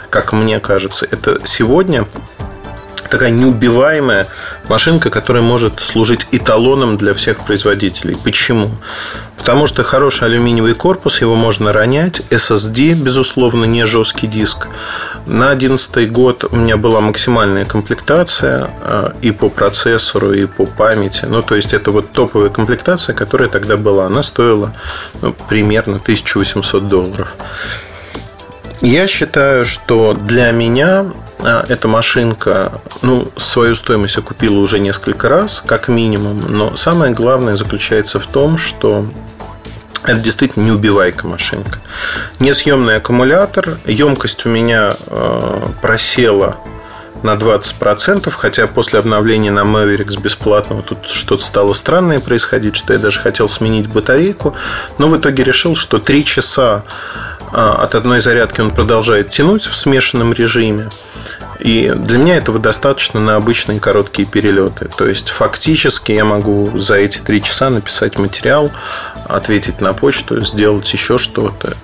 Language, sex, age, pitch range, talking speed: Russian, male, 30-49, 105-125 Hz, 130 wpm